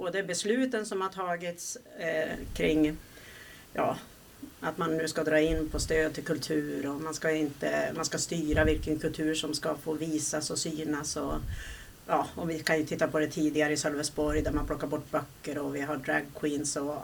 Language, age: Swedish, 40-59